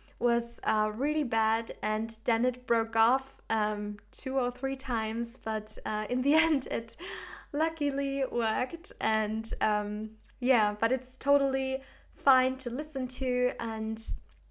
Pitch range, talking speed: 215-255 Hz, 135 wpm